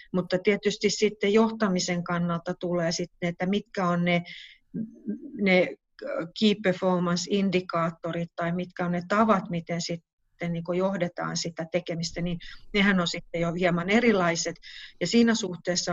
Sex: female